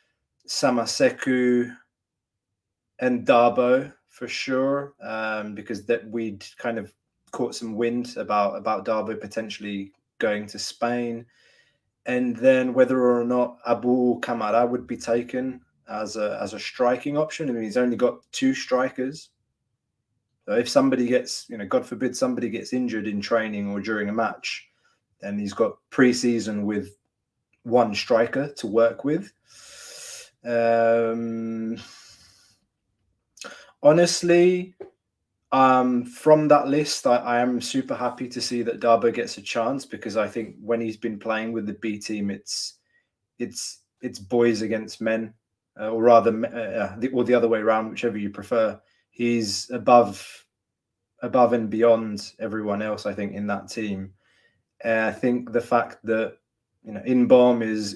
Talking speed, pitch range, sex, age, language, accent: 145 wpm, 110-125 Hz, male, 20-39, English, British